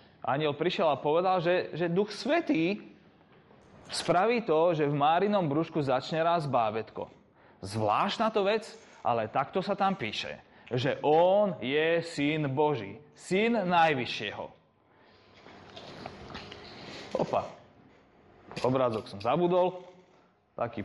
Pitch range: 150-205 Hz